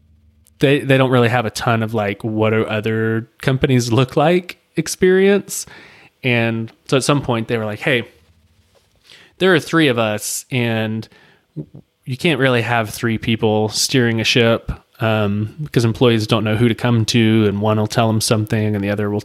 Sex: male